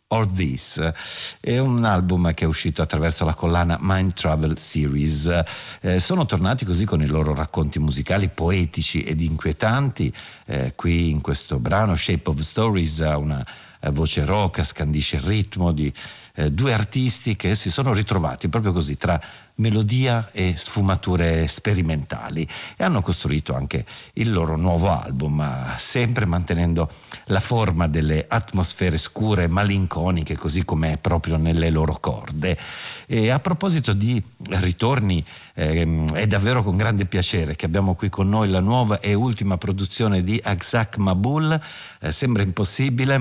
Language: Italian